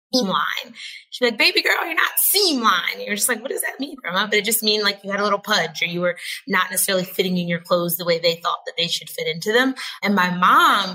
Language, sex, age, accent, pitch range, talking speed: English, female, 20-39, American, 175-205 Hz, 275 wpm